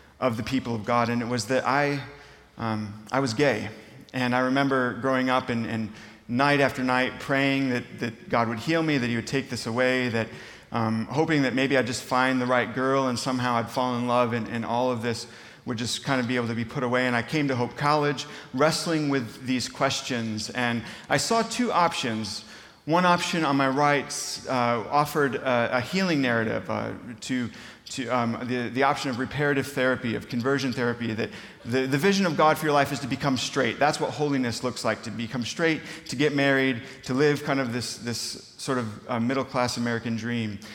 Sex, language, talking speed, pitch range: male, English, 210 wpm, 120-145 Hz